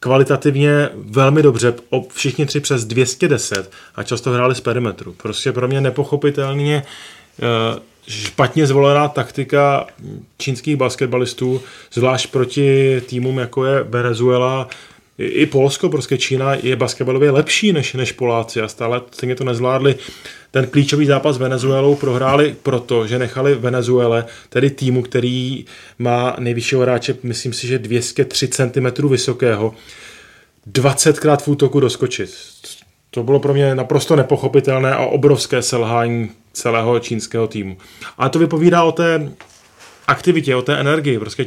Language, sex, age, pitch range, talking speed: Czech, male, 20-39, 120-140 Hz, 130 wpm